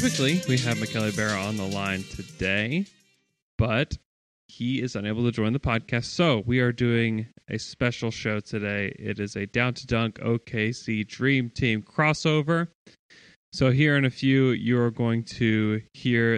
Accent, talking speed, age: American, 160 wpm, 20-39